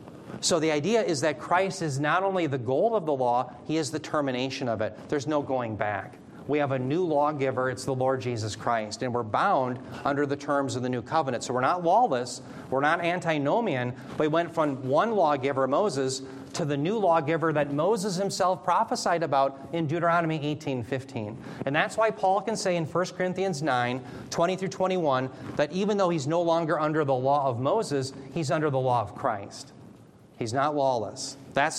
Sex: male